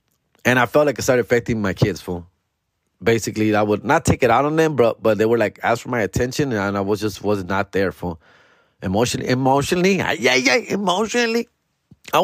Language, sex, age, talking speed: English, male, 20-39, 205 wpm